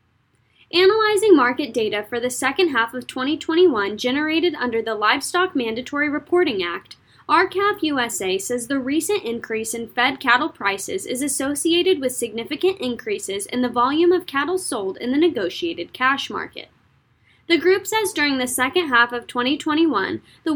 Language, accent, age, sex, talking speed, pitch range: English, American, 10-29, female, 150 wpm, 230-340 Hz